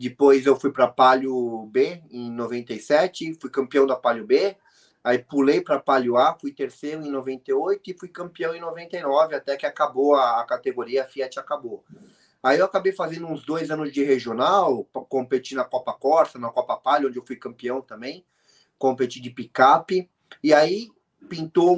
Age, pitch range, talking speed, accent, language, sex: 20-39, 130-155 Hz, 175 wpm, Brazilian, Portuguese, male